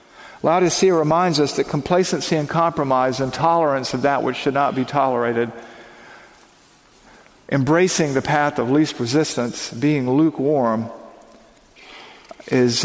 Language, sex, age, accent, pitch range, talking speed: English, male, 50-69, American, 135-175 Hz, 115 wpm